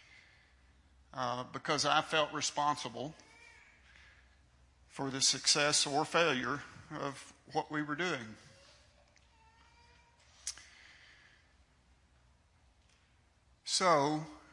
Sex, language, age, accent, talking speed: male, English, 50-69, American, 65 wpm